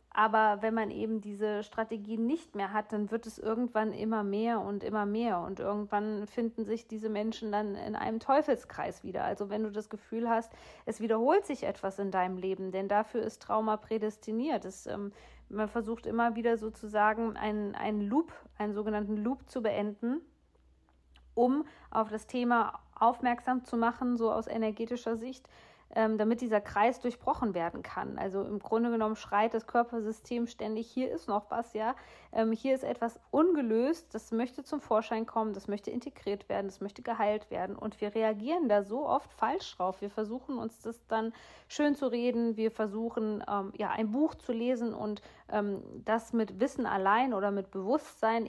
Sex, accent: female, German